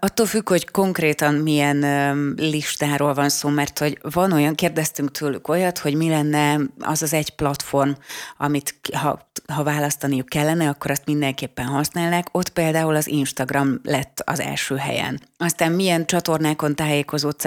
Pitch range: 140-155 Hz